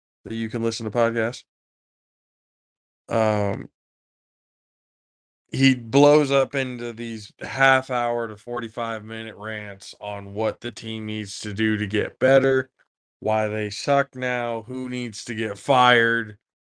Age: 20-39